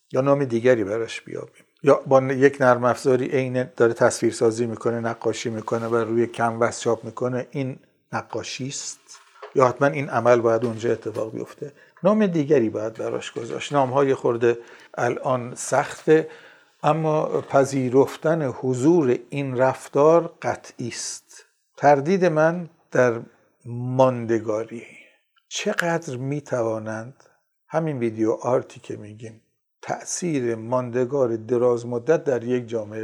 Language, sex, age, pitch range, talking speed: Persian, male, 50-69, 120-155 Hz, 120 wpm